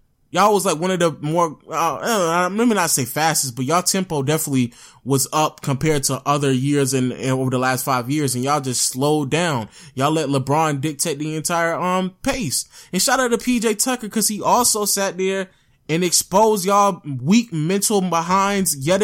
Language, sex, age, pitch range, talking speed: English, male, 20-39, 130-180 Hz, 190 wpm